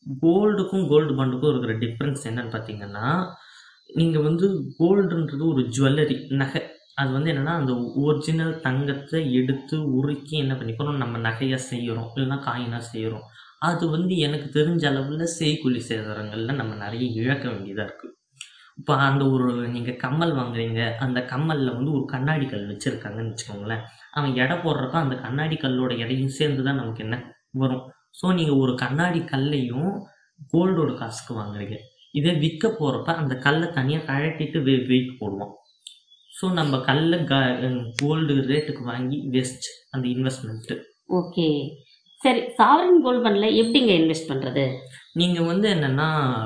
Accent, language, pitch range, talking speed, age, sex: native, Tamil, 125-155 Hz, 105 wpm, 20-39, female